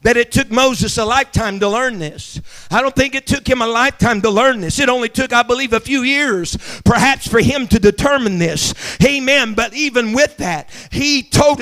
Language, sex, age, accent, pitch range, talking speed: English, male, 50-69, American, 240-325 Hz, 210 wpm